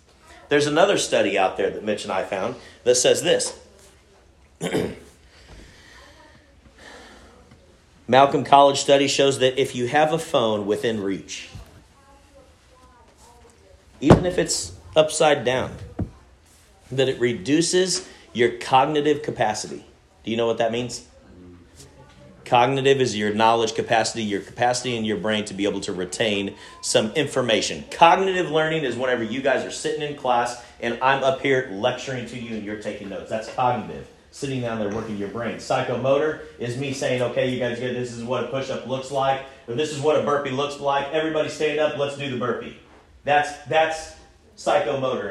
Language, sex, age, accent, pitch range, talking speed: English, male, 40-59, American, 110-145 Hz, 160 wpm